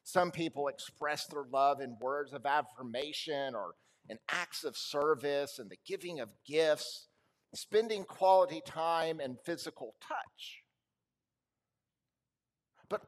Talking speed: 120 wpm